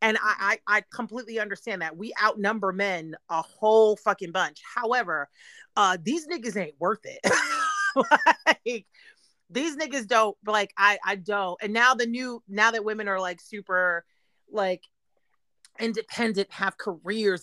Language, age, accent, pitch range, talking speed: English, 30-49, American, 195-240 Hz, 150 wpm